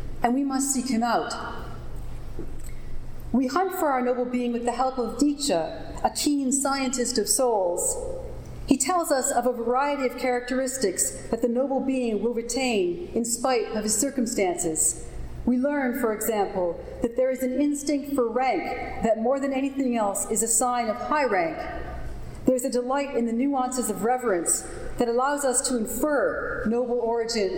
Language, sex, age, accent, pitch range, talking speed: English, female, 40-59, American, 225-275 Hz, 170 wpm